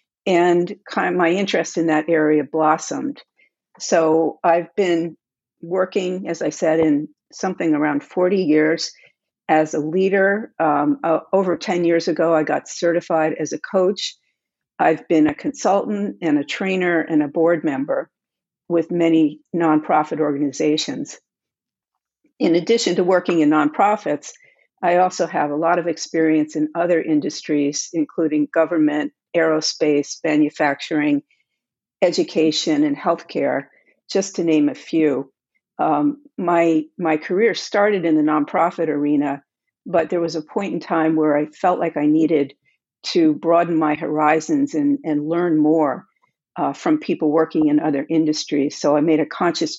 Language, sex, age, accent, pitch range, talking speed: English, female, 50-69, American, 155-185 Hz, 145 wpm